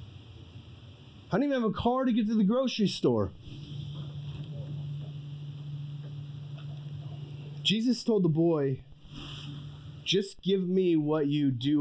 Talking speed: 110 wpm